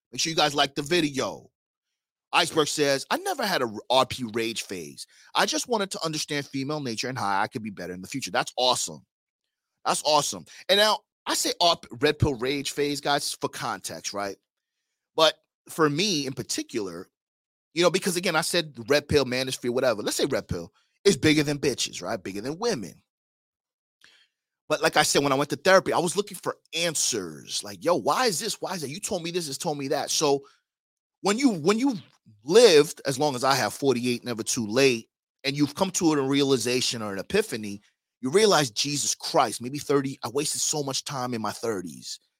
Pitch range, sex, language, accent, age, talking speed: 125-165 Hz, male, English, American, 30-49, 205 wpm